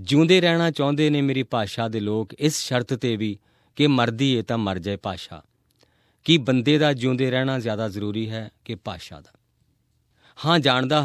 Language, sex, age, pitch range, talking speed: Punjabi, male, 40-59, 100-130 Hz, 175 wpm